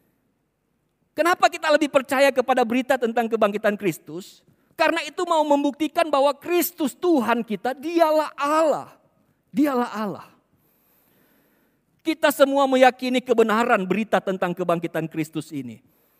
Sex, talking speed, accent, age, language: male, 110 wpm, native, 50-69, Indonesian